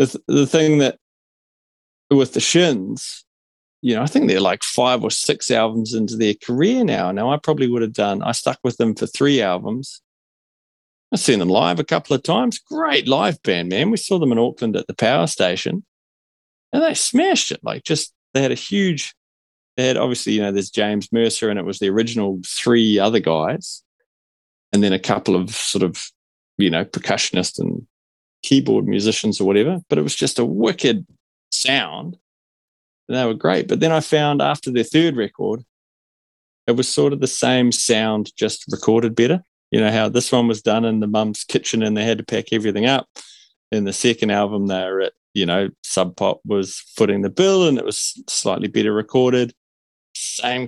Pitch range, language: 100-130 Hz, English